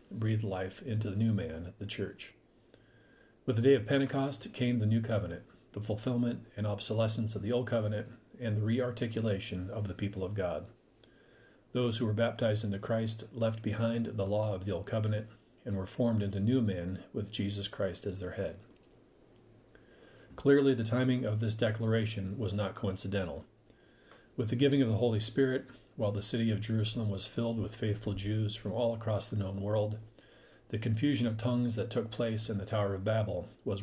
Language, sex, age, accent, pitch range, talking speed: English, male, 40-59, American, 100-115 Hz, 185 wpm